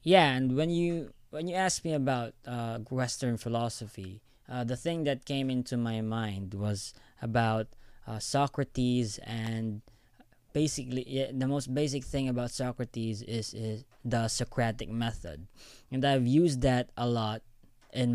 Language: English